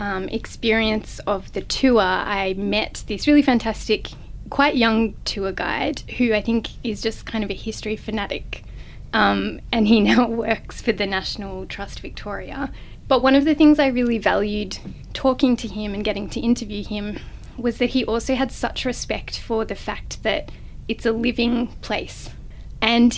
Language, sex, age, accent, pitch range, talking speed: English, female, 10-29, Australian, 210-245 Hz, 170 wpm